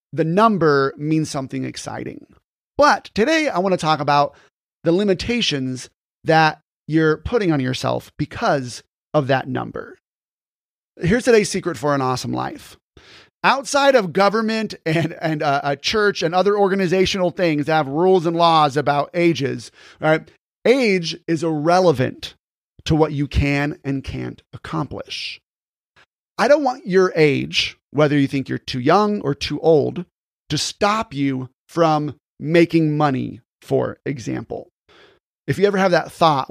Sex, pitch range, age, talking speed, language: male, 140-185 Hz, 30-49, 145 wpm, English